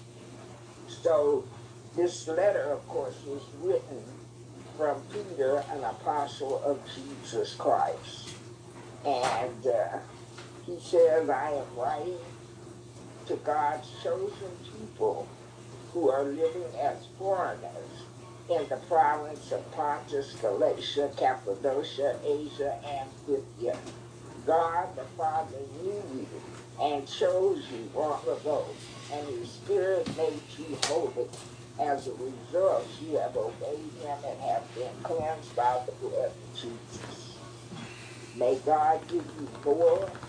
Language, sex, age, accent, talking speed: English, male, 60-79, American, 115 wpm